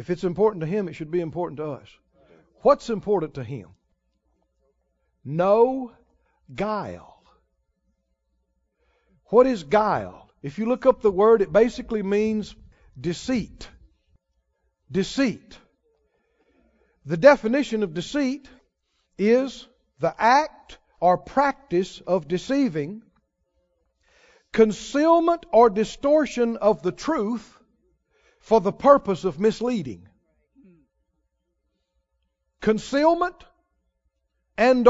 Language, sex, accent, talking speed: English, male, American, 95 wpm